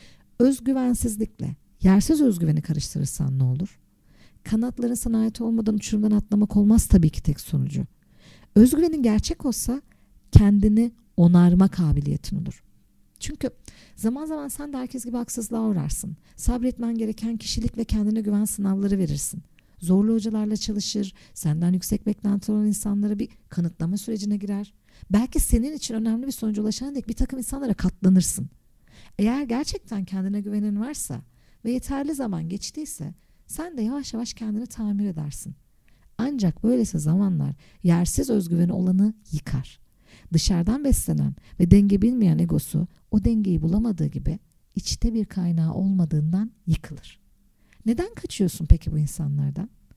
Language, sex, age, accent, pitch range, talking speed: Turkish, female, 50-69, native, 175-230 Hz, 130 wpm